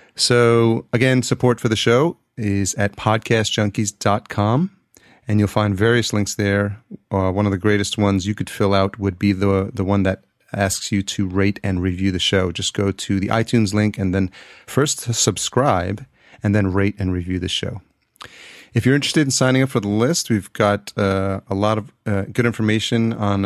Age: 30-49